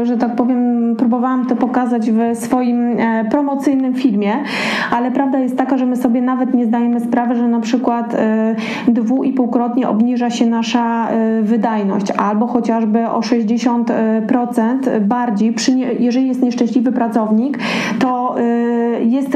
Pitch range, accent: 230-255 Hz, native